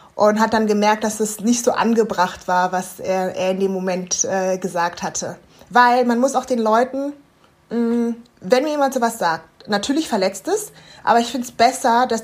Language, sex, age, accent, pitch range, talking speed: German, female, 20-39, German, 205-250 Hz, 195 wpm